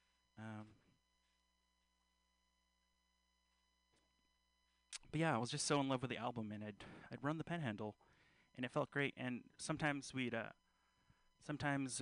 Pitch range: 95-130 Hz